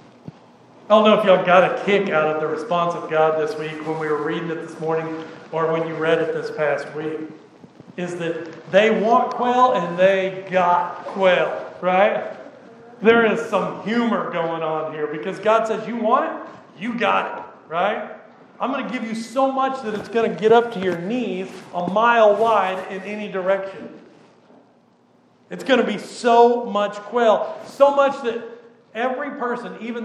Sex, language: male, English